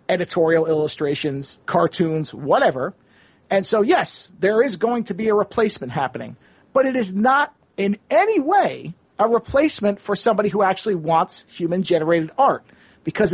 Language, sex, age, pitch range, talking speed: English, male, 40-59, 170-225 Hz, 145 wpm